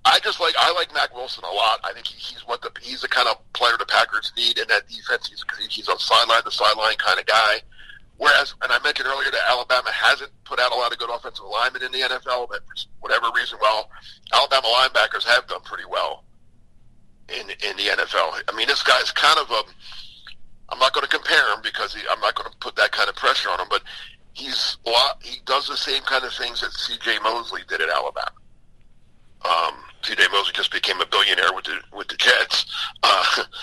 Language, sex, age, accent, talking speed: English, male, 50-69, American, 225 wpm